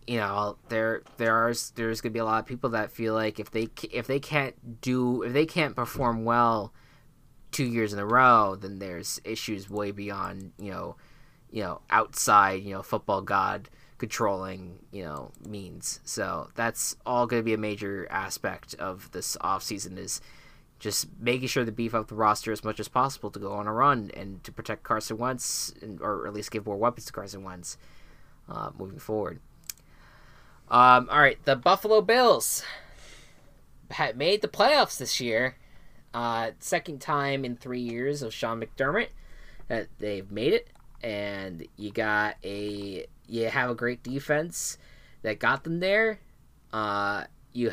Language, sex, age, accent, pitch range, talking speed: English, male, 20-39, American, 105-130 Hz, 170 wpm